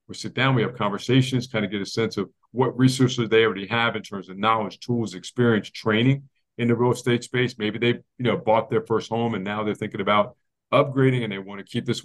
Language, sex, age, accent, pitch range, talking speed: English, male, 40-59, American, 105-120 Hz, 235 wpm